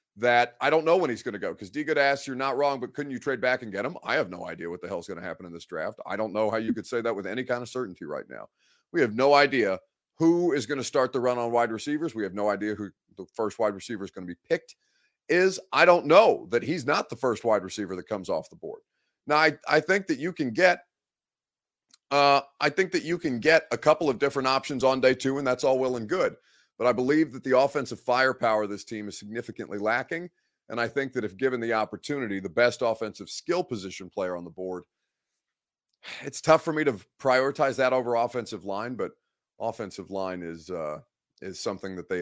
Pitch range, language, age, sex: 110-145 Hz, English, 30-49, male